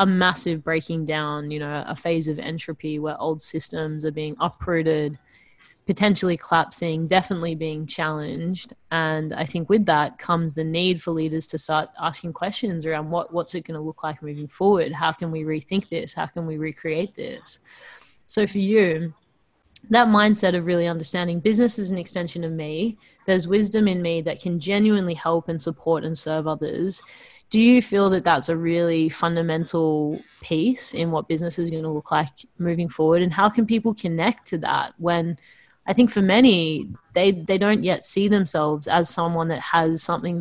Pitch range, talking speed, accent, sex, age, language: 160-190 Hz, 185 wpm, Australian, female, 20-39, English